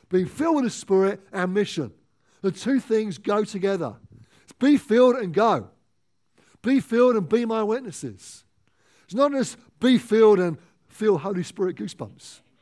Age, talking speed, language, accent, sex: 50-69, 155 wpm, English, British, male